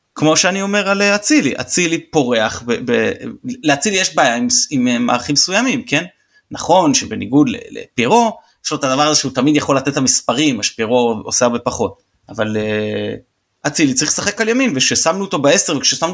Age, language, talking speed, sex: 30-49, Hebrew, 165 wpm, male